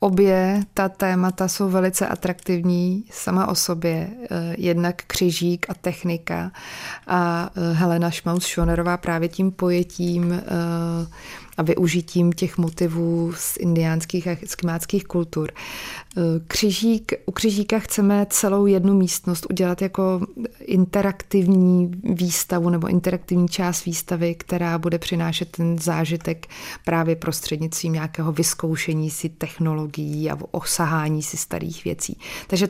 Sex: female